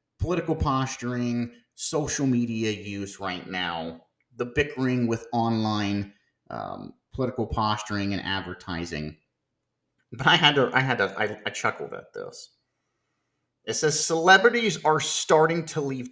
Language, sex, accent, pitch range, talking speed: English, male, American, 105-150 Hz, 130 wpm